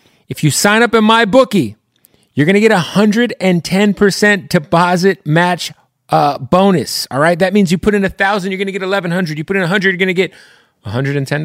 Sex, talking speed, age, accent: male, 205 wpm, 30-49, American